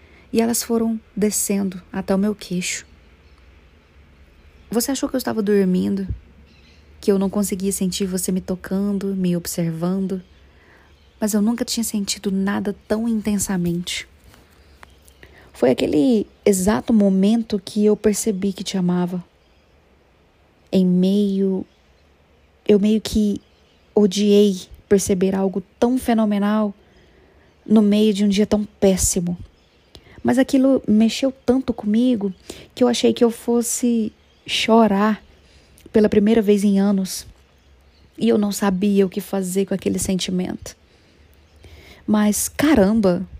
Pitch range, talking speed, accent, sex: 180-215 Hz, 120 wpm, Brazilian, female